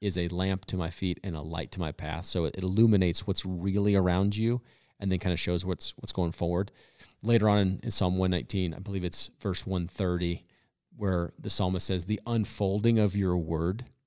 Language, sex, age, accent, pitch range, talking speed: English, male, 40-59, American, 90-105 Hz, 205 wpm